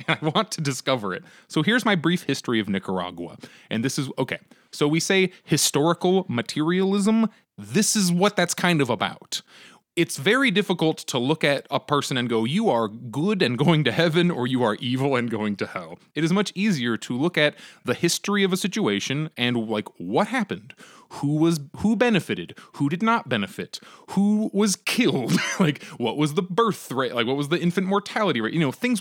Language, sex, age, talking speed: English, male, 30-49, 200 wpm